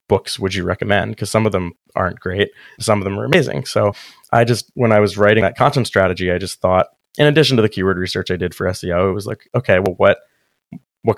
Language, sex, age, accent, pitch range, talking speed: English, male, 20-39, American, 90-110 Hz, 240 wpm